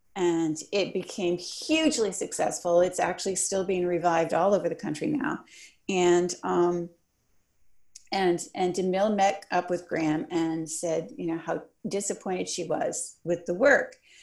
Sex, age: female, 40-59